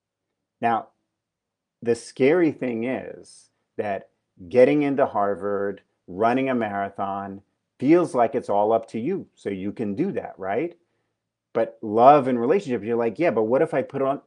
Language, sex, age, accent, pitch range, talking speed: English, male, 40-59, American, 115-150 Hz, 160 wpm